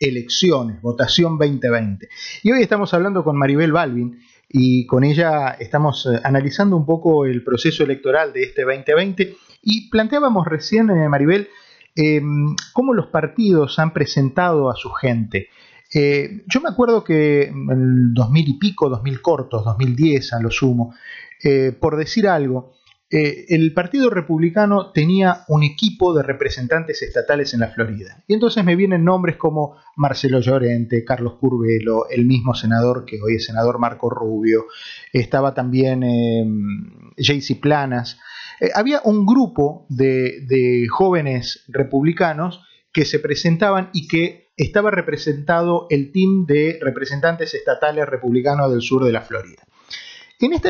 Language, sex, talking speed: Spanish, male, 140 wpm